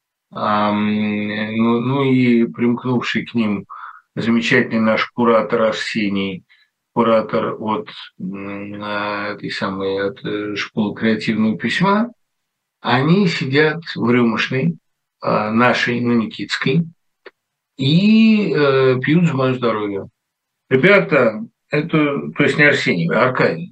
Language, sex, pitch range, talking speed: Russian, male, 120-160 Hz, 100 wpm